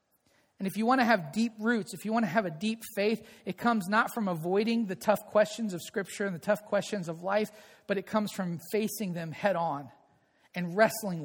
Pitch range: 200-250 Hz